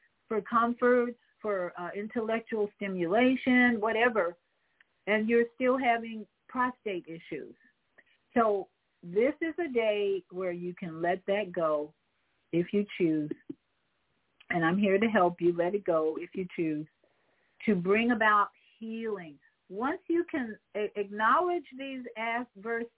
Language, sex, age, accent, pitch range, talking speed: English, female, 50-69, American, 180-235 Hz, 130 wpm